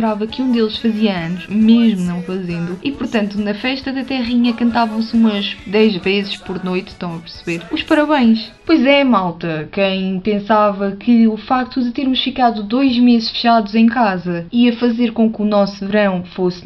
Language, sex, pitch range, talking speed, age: Portuguese, female, 195-240 Hz, 175 wpm, 20-39